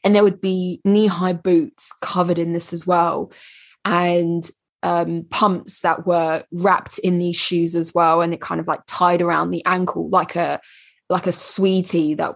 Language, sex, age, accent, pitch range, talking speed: English, female, 20-39, British, 175-195 Hz, 180 wpm